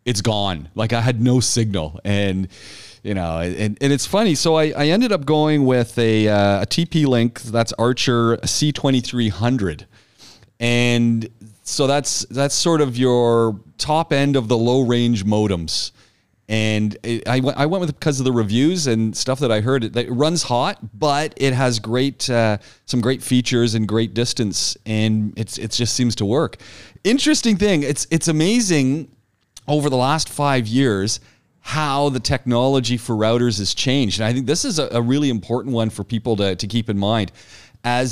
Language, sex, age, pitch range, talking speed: English, male, 40-59, 105-130 Hz, 190 wpm